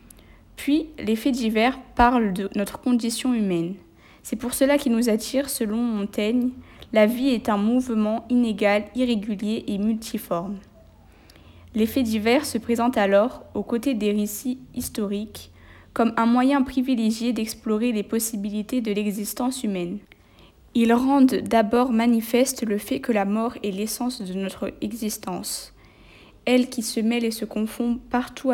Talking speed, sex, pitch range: 140 wpm, female, 205-245 Hz